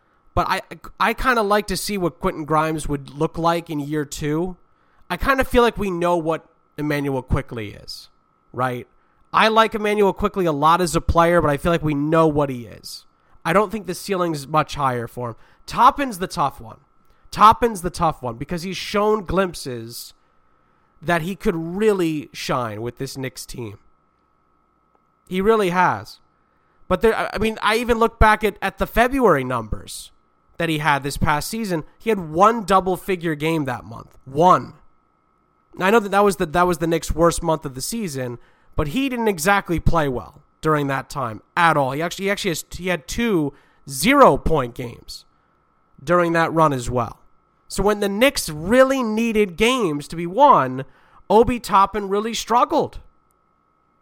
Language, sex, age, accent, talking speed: English, male, 30-49, American, 180 wpm